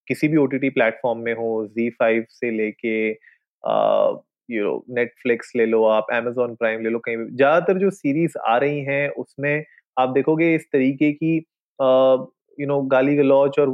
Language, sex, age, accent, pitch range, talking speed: Hindi, male, 30-49, native, 125-155 Hz, 165 wpm